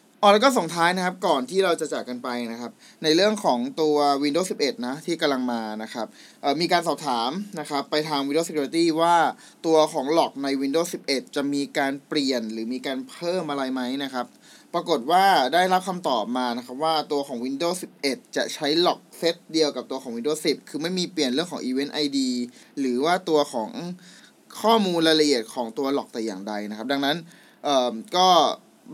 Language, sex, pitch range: Thai, male, 130-170 Hz